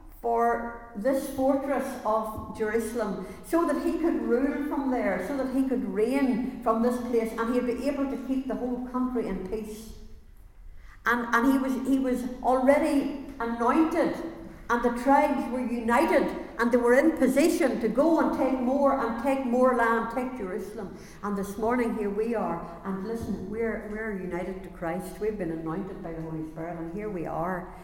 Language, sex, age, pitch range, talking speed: English, female, 60-79, 180-245 Hz, 185 wpm